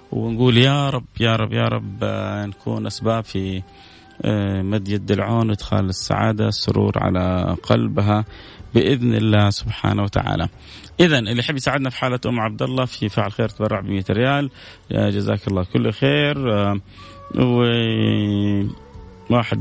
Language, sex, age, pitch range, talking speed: Arabic, male, 30-49, 105-130 Hz, 135 wpm